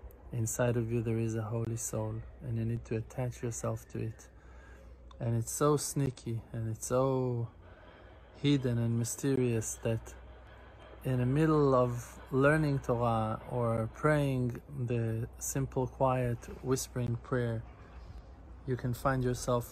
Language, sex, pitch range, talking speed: English, male, 110-125 Hz, 135 wpm